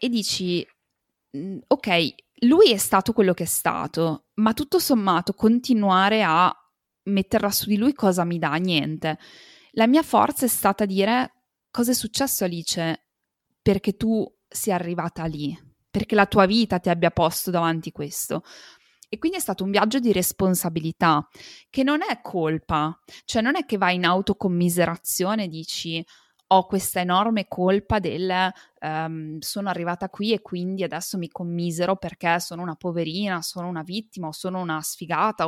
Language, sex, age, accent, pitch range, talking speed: Italian, female, 20-39, native, 170-220 Hz, 155 wpm